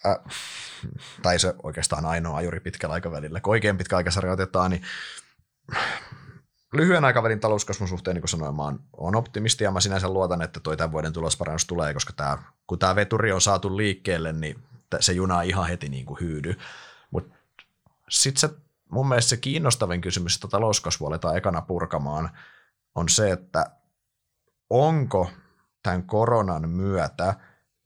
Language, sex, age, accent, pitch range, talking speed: Finnish, male, 30-49, native, 85-115 Hz, 135 wpm